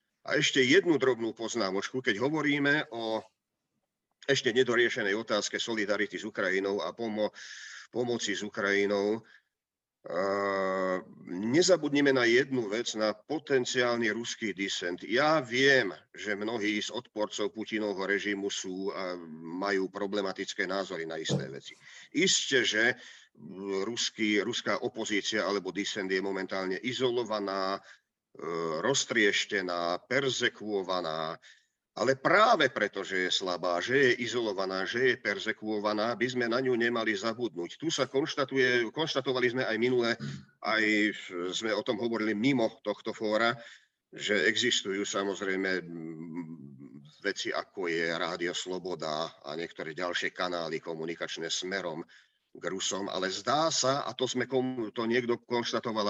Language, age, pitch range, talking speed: Slovak, 50-69, 95-125 Hz, 120 wpm